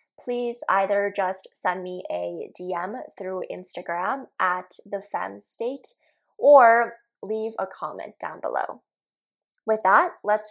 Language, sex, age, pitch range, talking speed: English, female, 10-29, 200-290 Hz, 115 wpm